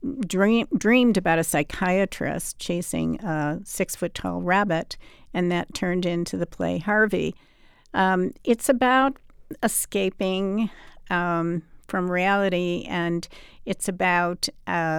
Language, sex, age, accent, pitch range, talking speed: English, female, 50-69, American, 170-195 Hz, 105 wpm